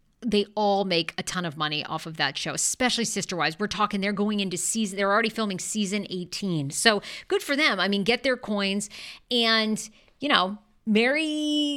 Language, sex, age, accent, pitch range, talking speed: English, female, 40-59, American, 190-290 Hz, 195 wpm